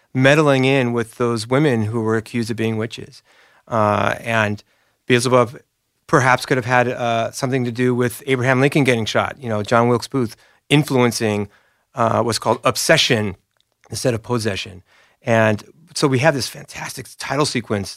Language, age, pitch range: English, 30-49, 110-130 Hz